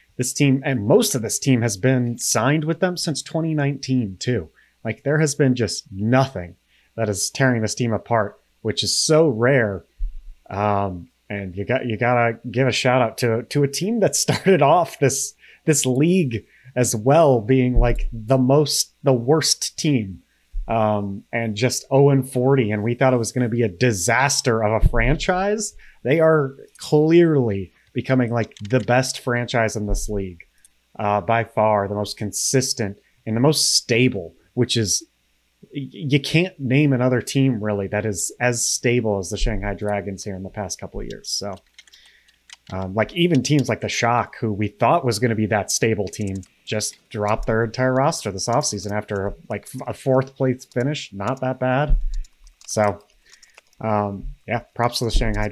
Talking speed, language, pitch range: 180 wpm, English, 105-135 Hz